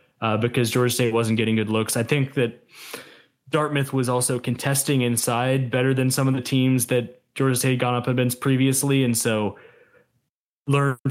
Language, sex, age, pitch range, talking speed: English, male, 20-39, 120-140 Hz, 185 wpm